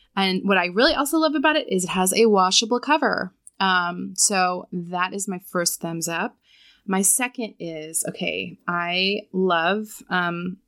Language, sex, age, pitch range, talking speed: English, female, 20-39, 175-220 Hz, 165 wpm